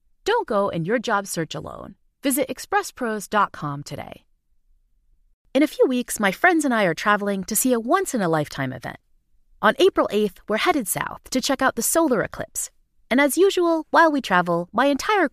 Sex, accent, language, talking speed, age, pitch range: female, American, English, 180 wpm, 30-49, 195-325 Hz